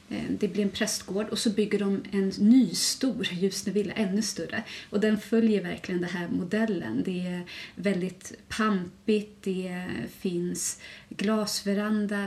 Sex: female